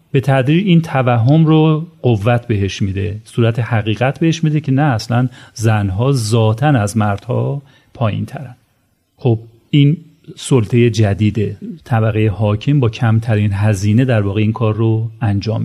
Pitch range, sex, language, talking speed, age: 110-135 Hz, male, Persian, 140 wpm, 40-59